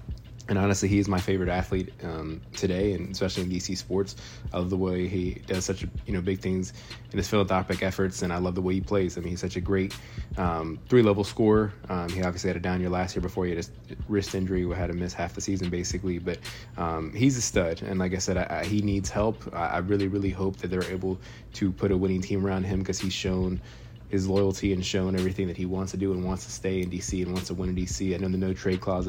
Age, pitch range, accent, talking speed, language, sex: 20-39, 90-105 Hz, American, 260 wpm, English, male